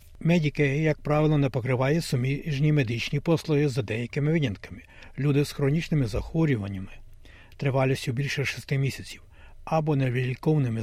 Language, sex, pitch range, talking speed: Ukrainian, male, 120-155 Hz, 115 wpm